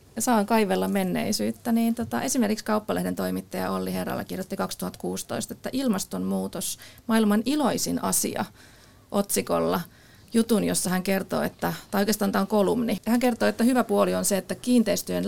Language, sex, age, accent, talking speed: Finnish, female, 30-49, native, 150 wpm